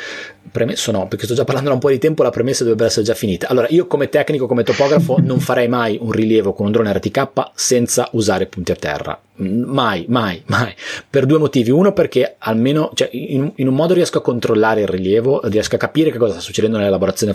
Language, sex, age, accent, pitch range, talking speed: Italian, male, 30-49, native, 100-135 Hz, 220 wpm